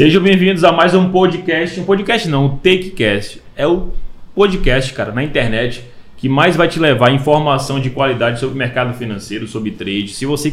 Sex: male